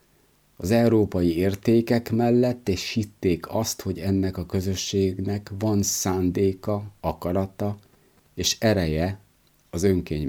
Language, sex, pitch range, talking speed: Hungarian, male, 80-105 Hz, 105 wpm